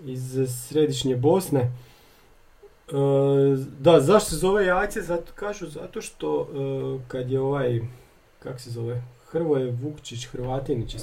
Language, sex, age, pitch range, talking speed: Croatian, male, 40-59, 130-160 Hz, 135 wpm